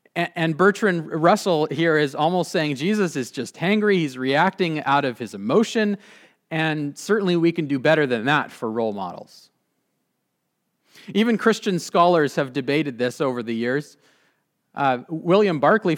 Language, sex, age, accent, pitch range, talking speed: English, male, 40-59, American, 145-195 Hz, 150 wpm